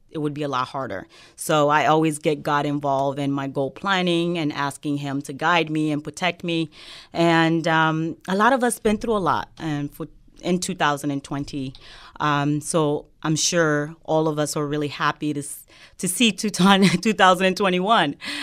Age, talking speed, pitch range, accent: 30-49, 180 wpm, 145-165 Hz, American